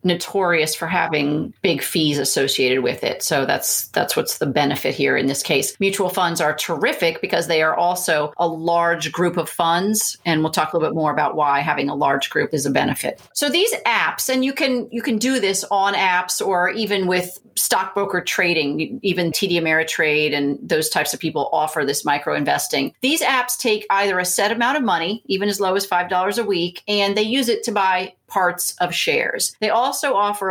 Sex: female